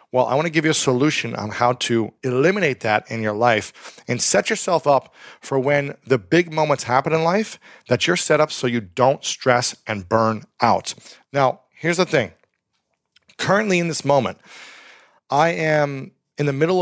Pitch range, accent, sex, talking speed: 120-145 Hz, American, male, 185 wpm